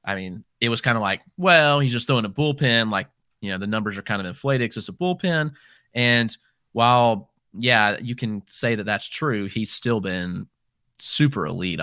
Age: 20-39